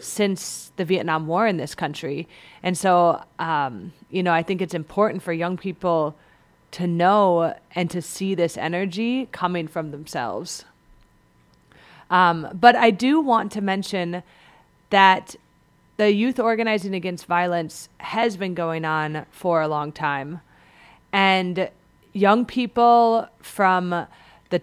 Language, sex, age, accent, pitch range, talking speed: English, female, 30-49, American, 165-205 Hz, 135 wpm